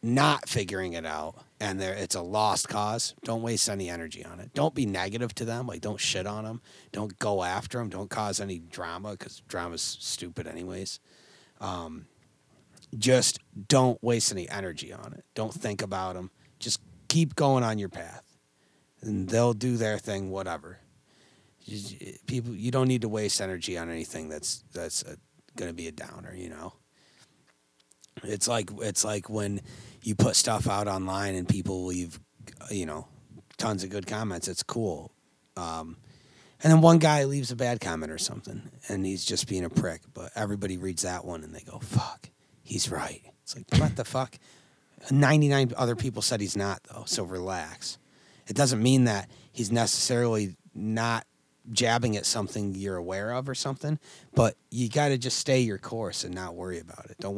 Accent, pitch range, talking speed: American, 95-125 Hz, 180 wpm